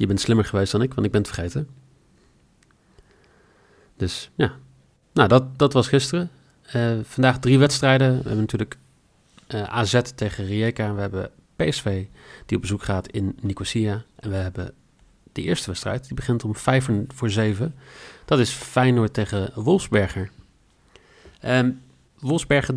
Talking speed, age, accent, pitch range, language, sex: 150 wpm, 40-59, Dutch, 105-130 Hz, Dutch, male